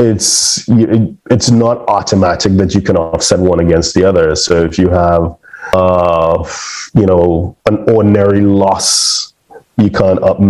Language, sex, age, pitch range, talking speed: English, male, 30-49, 95-115 Hz, 135 wpm